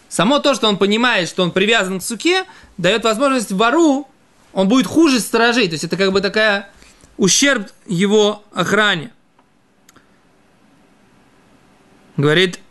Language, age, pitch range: Russian, 20-39, 170-225 Hz